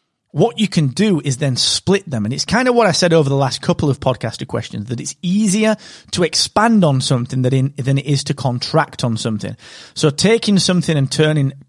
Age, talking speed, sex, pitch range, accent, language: 30-49, 210 wpm, male, 125-180 Hz, British, English